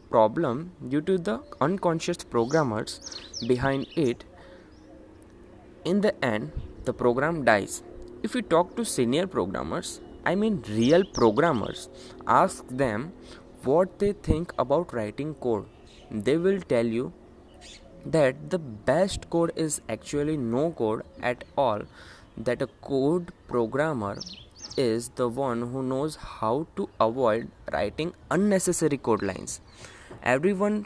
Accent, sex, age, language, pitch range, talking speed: native, male, 20-39, Hindi, 115-175 Hz, 125 wpm